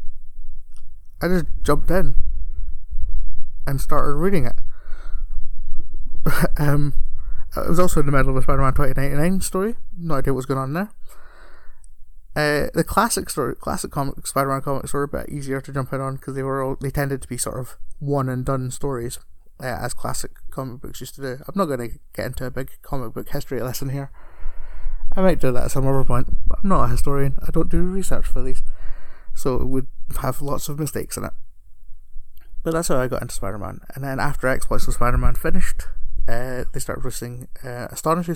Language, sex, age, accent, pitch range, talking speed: English, male, 20-39, British, 120-145 Hz, 195 wpm